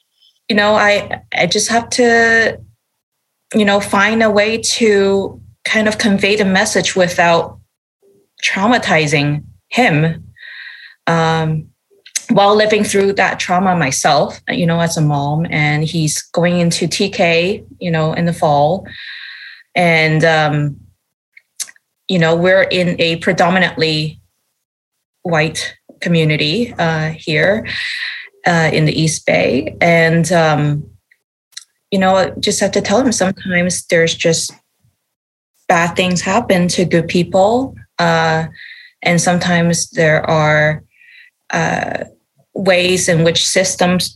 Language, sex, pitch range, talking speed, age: English, female, 160-205 Hz, 120 wpm, 20-39